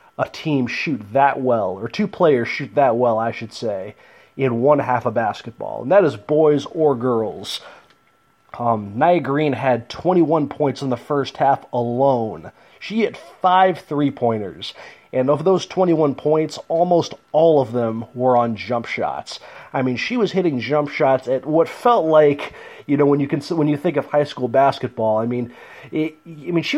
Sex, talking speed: male, 190 wpm